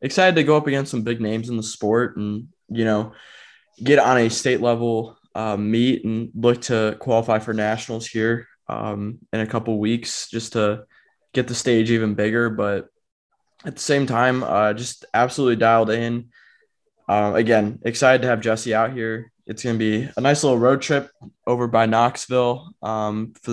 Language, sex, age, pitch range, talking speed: English, male, 20-39, 110-125 Hz, 180 wpm